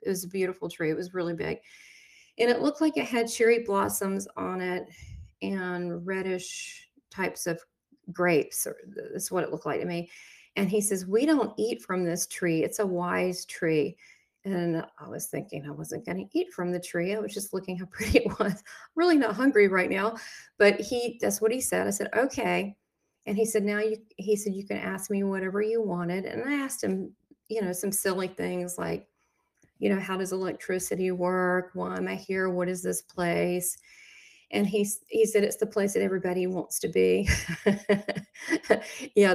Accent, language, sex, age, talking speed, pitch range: American, English, female, 40-59, 200 wpm, 180-220 Hz